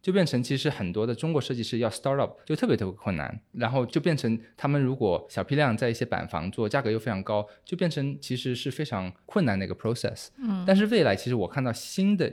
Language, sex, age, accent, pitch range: Chinese, male, 20-39, native, 100-140 Hz